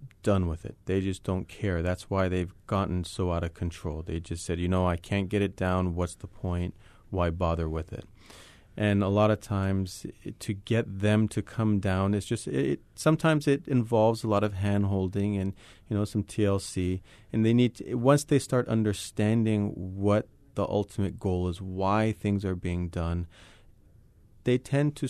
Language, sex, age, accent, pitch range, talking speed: English, male, 30-49, American, 95-110 Hz, 190 wpm